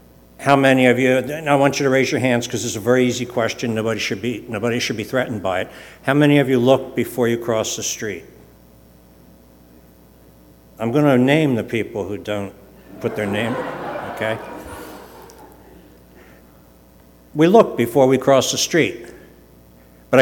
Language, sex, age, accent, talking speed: English, male, 60-79, American, 165 wpm